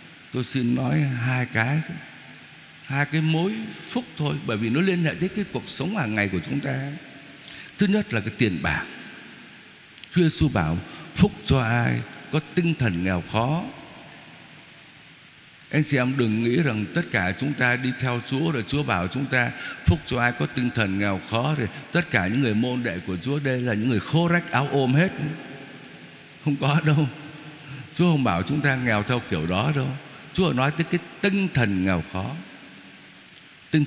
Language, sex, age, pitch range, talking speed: Vietnamese, male, 60-79, 120-160 Hz, 190 wpm